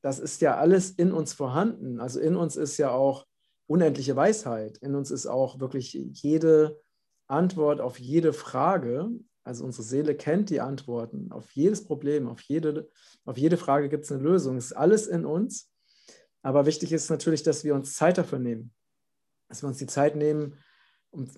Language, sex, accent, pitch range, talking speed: German, male, German, 135-160 Hz, 180 wpm